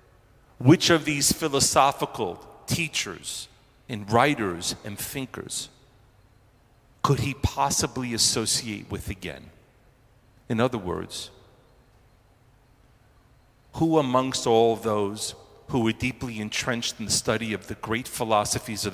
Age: 40-59